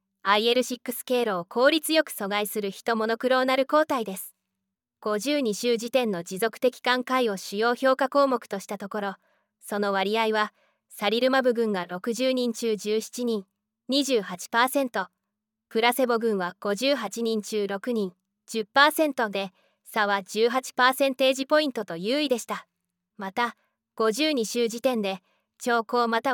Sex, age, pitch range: female, 20-39, 200-250 Hz